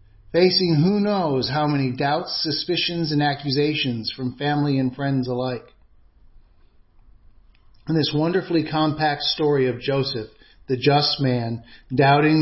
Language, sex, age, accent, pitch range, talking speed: English, male, 50-69, American, 130-165 Hz, 120 wpm